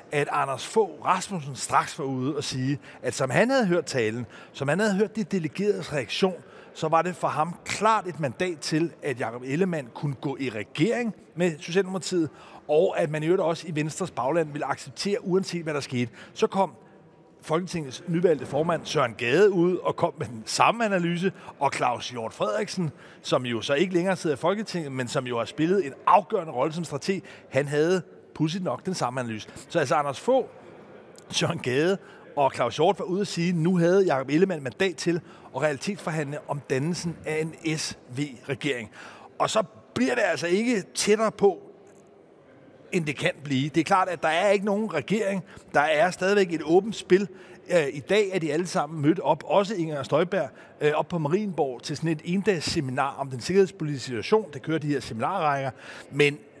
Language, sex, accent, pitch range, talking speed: Danish, male, native, 145-190 Hz, 190 wpm